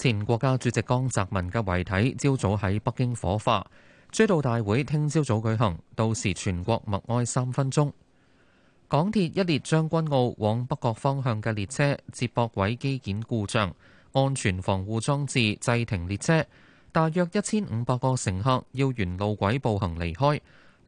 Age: 20-39